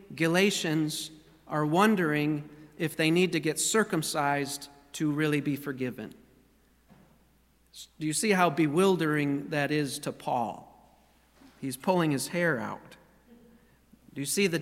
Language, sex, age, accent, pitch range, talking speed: English, male, 40-59, American, 150-180 Hz, 125 wpm